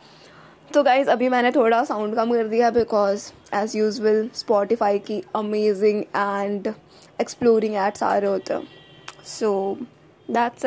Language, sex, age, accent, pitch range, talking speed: Hindi, female, 20-39, native, 220-265 Hz, 135 wpm